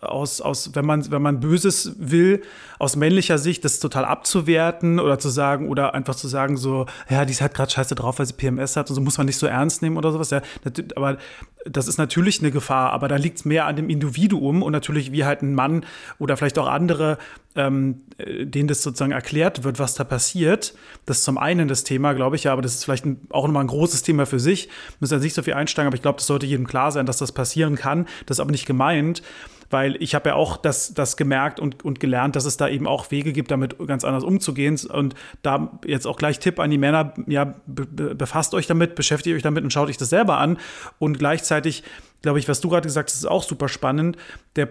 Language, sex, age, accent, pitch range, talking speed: German, male, 30-49, German, 135-160 Hz, 240 wpm